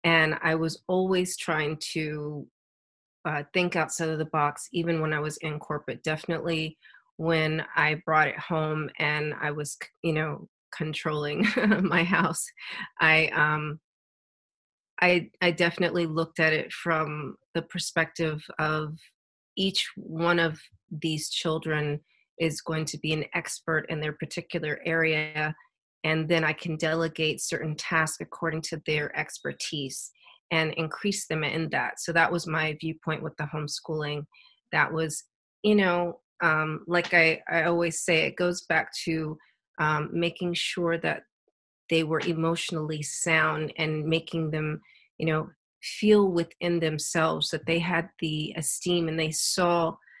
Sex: female